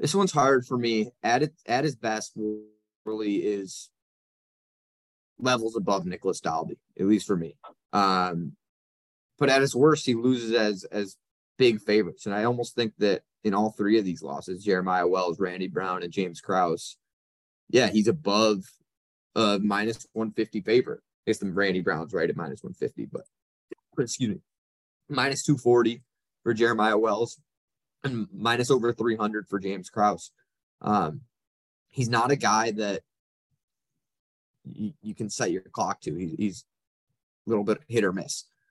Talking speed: 160 wpm